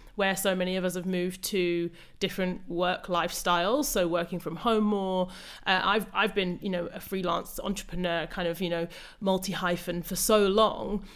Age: 30-49